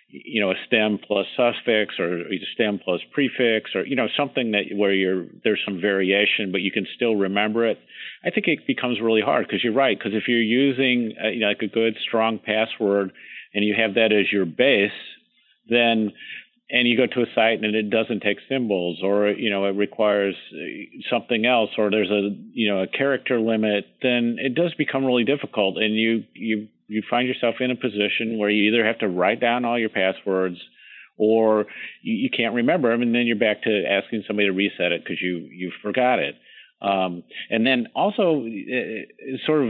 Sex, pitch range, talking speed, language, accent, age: male, 105-120 Hz, 200 wpm, English, American, 50-69